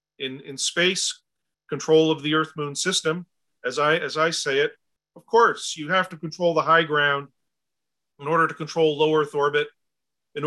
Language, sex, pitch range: English, male, 145-170 Hz